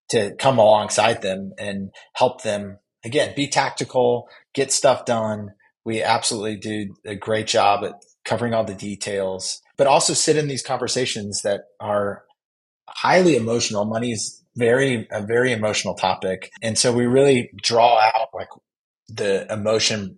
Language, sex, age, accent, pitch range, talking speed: English, male, 30-49, American, 100-125 Hz, 150 wpm